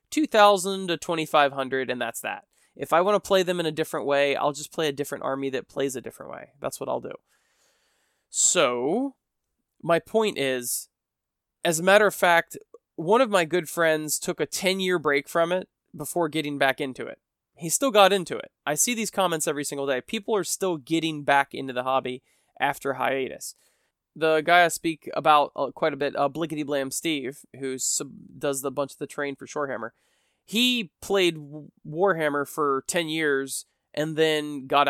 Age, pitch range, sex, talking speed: 20-39, 140-175 Hz, male, 195 wpm